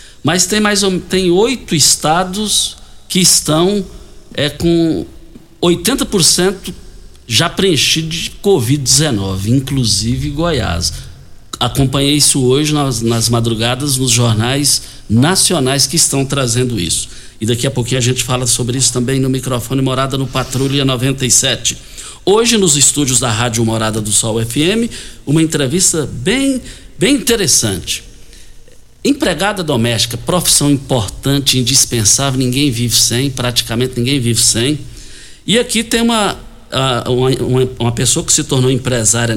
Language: Portuguese